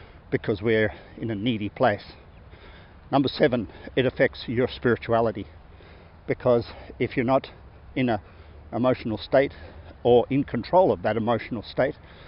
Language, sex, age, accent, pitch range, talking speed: English, male, 50-69, Australian, 90-125 Hz, 130 wpm